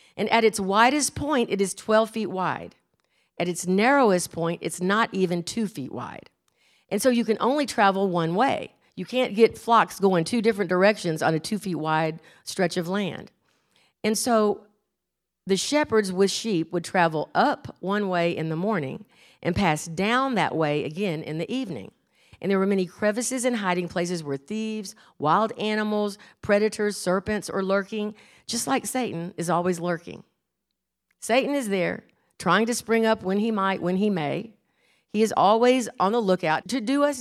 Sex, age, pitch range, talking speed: female, 50-69, 180-230 Hz, 180 wpm